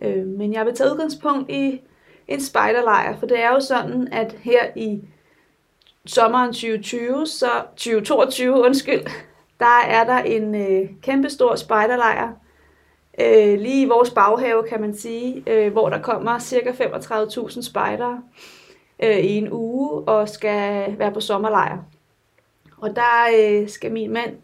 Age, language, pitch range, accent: 30-49, Danish, 210-255 Hz, native